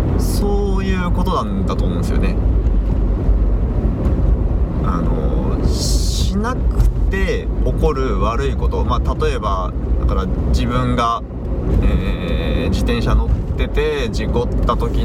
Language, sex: Japanese, male